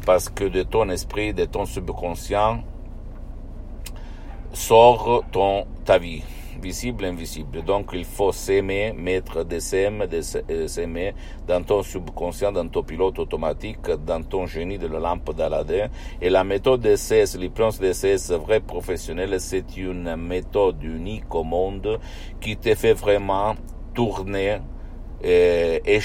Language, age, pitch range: Italian, 60-79, 90-110 Hz